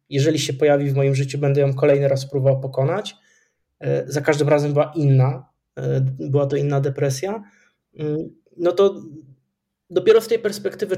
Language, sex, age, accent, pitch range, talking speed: Polish, male, 20-39, native, 135-160 Hz, 150 wpm